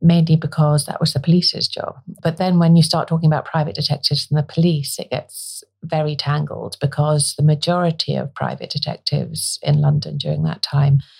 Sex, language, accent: female, English, British